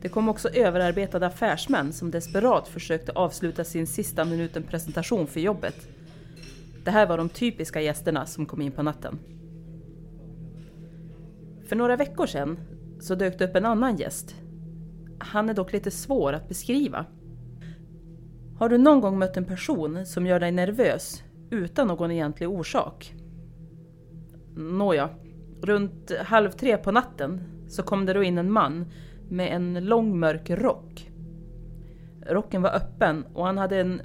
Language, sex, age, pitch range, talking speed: Swedish, female, 30-49, 160-185 Hz, 145 wpm